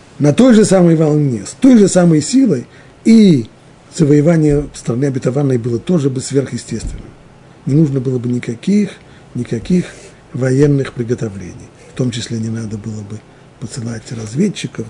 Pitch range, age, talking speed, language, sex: 115-145 Hz, 50-69, 140 wpm, Russian, male